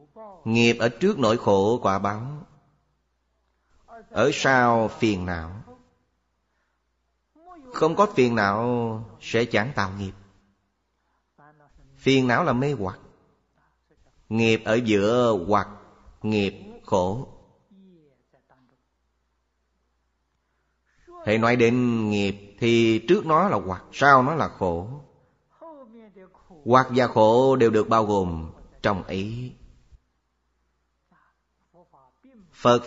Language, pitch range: Vietnamese, 80-130 Hz